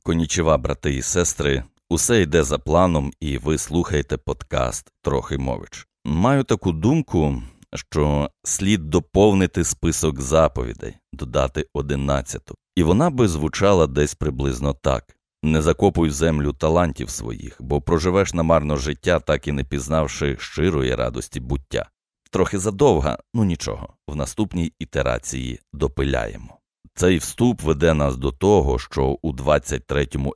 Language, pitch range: Ukrainian, 70-85 Hz